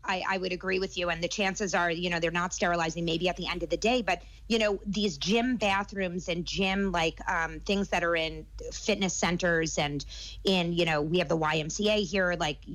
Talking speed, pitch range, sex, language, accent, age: 225 wpm, 175-205 Hz, female, English, American, 30-49